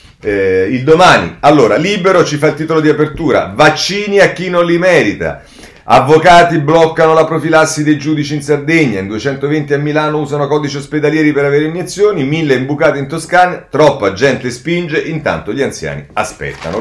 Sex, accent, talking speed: male, native, 165 wpm